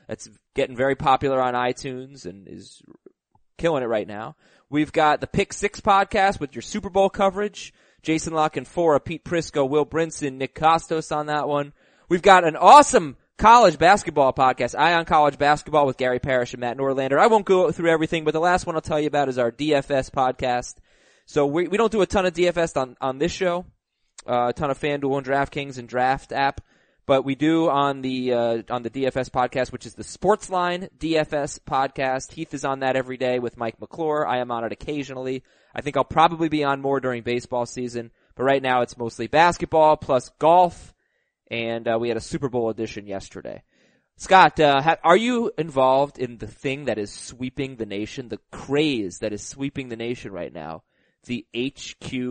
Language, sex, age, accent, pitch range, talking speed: English, male, 20-39, American, 125-160 Hz, 200 wpm